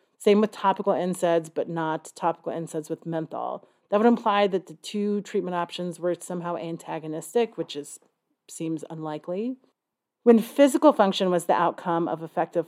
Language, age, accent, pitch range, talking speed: English, 30-49, American, 170-210 Hz, 155 wpm